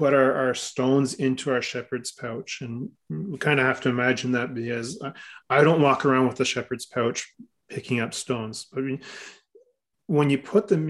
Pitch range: 125-145 Hz